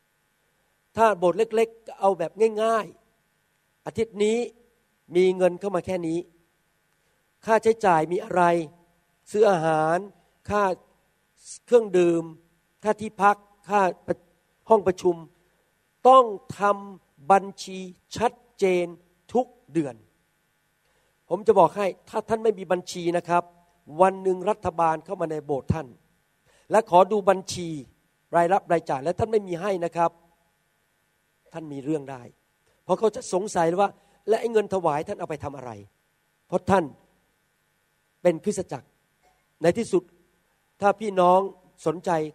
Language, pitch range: Thai, 160-205 Hz